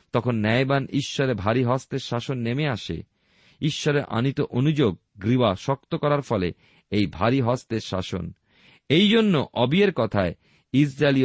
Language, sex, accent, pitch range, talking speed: Bengali, male, native, 110-150 Hz, 130 wpm